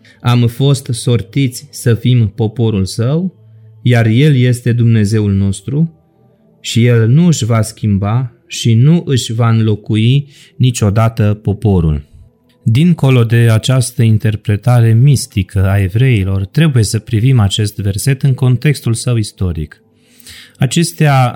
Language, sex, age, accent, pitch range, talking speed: Romanian, male, 30-49, native, 110-130 Hz, 120 wpm